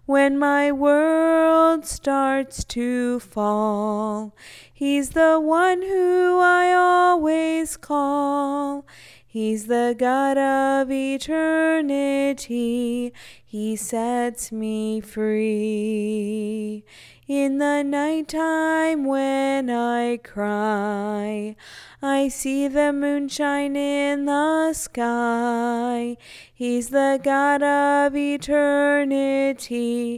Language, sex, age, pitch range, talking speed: English, female, 20-39, 240-300 Hz, 80 wpm